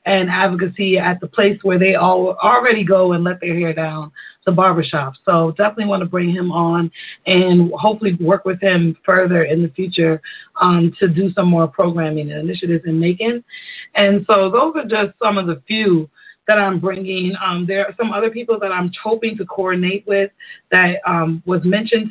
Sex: female